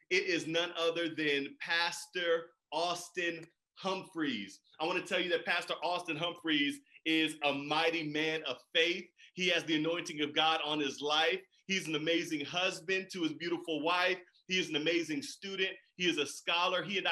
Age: 30-49